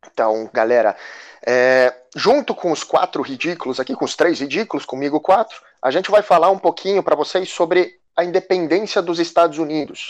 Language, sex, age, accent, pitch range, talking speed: Portuguese, male, 30-49, Brazilian, 150-215 Hz, 170 wpm